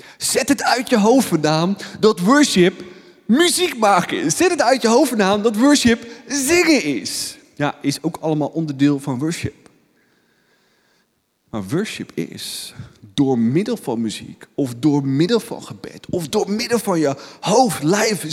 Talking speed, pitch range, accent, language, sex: 145 wpm, 175-255 Hz, Dutch, Dutch, male